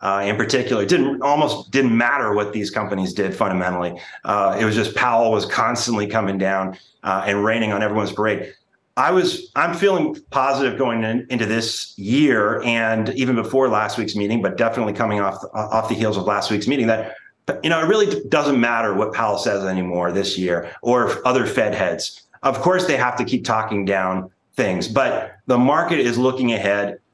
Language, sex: English, male